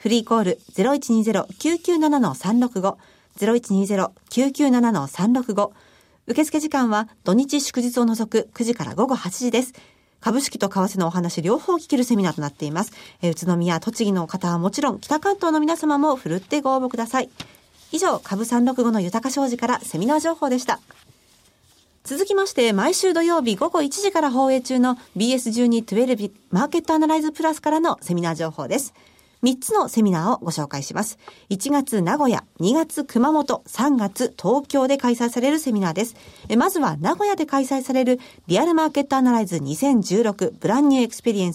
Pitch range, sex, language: 205-290 Hz, female, Japanese